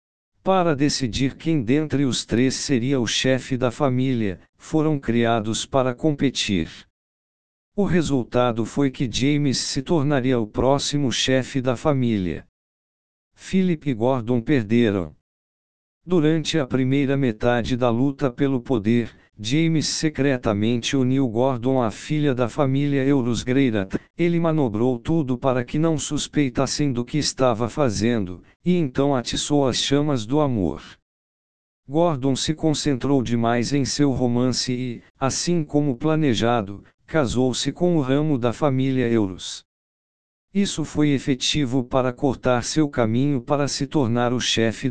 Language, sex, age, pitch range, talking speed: Portuguese, male, 60-79, 120-145 Hz, 130 wpm